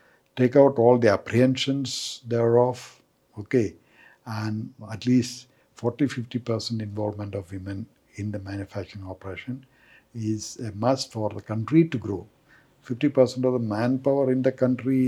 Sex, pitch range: male, 115-145 Hz